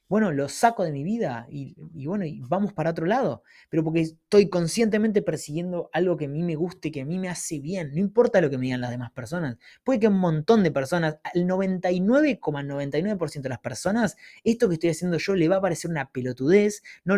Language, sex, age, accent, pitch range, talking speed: Spanish, male, 20-39, Argentinian, 155-210 Hz, 220 wpm